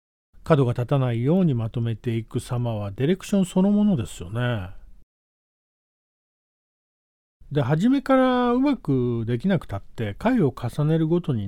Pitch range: 100-165 Hz